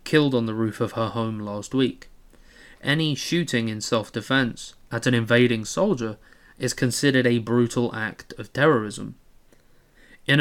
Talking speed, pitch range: 145 wpm, 110-125 Hz